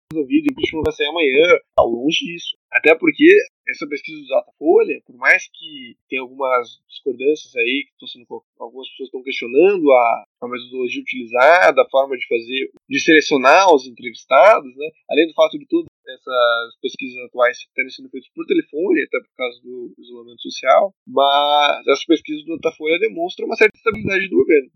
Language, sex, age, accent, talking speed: Portuguese, male, 10-29, Brazilian, 175 wpm